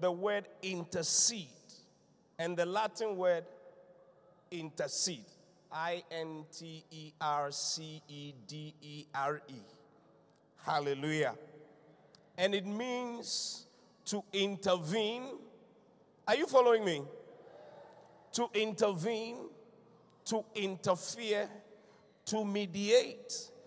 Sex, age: male, 50-69